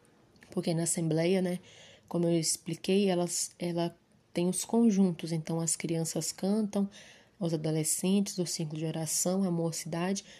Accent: Brazilian